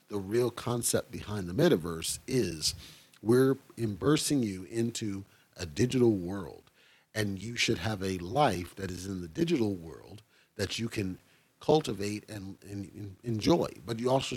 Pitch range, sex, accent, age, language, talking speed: 95-125 Hz, male, American, 40-59, English, 150 wpm